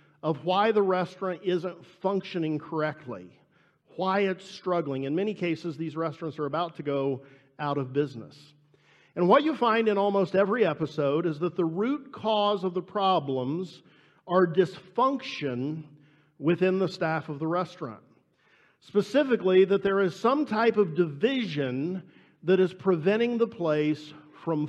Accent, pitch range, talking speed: American, 155-200 Hz, 145 wpm